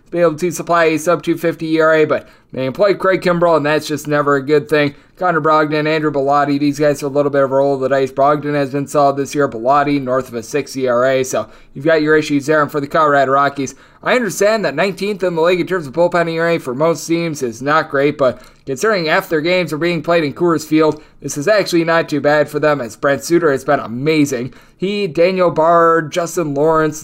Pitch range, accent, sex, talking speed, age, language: 145-190 Hz, American, male, 235 wpm, 20-39, English